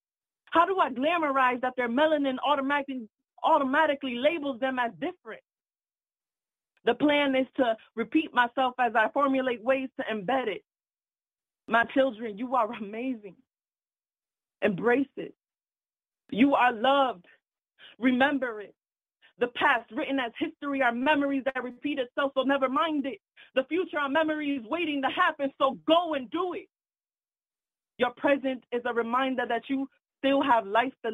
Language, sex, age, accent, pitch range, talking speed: English, female, 20-39, American, 235-280 Hz, 145 wpm